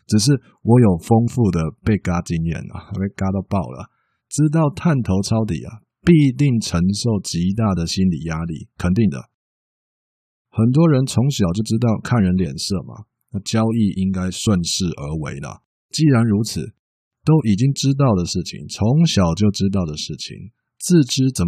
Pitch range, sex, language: 90-120 Hz, male, Chinese